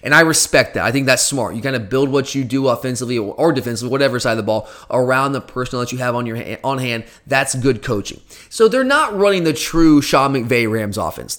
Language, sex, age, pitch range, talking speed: English, male, 30-49, 135-170 Hz, 235 wpm